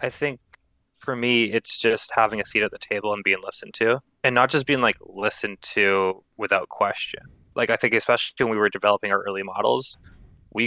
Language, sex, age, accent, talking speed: English, male, 20-39, American, 210 wpm